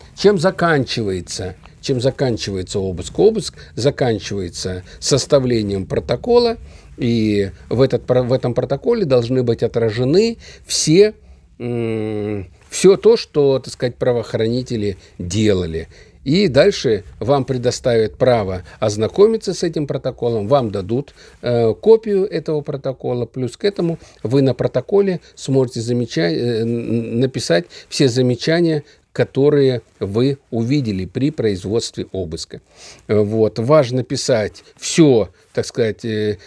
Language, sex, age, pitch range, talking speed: Russian, male, 50-69, 115-145 Hz, 95 wpm